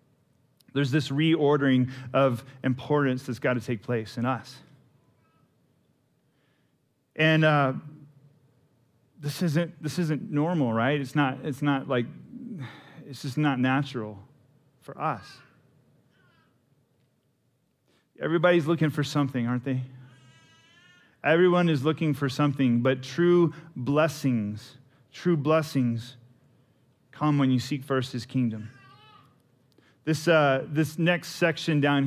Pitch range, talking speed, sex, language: 130-155 Hz, 110 wpm, male, English